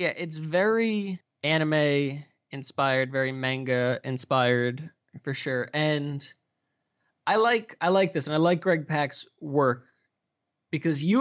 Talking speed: 120 wpm